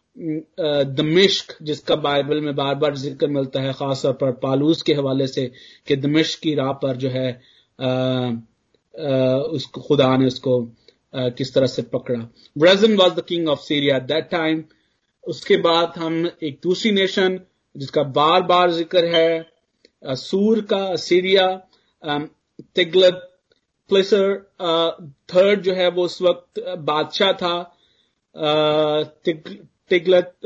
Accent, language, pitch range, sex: native, Hindi, 145-170 Hz, male